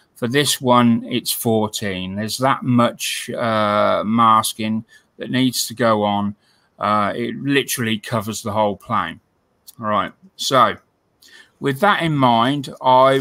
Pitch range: 115-130 Hz